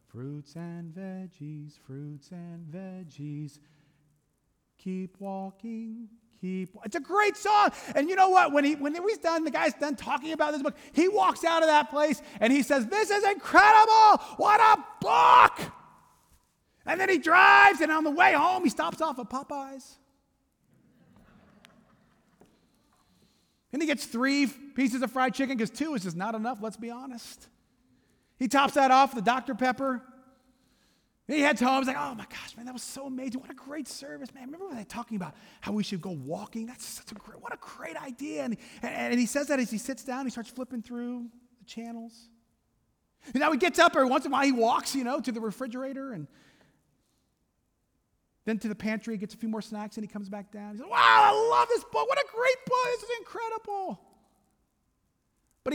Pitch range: 220-300 Hz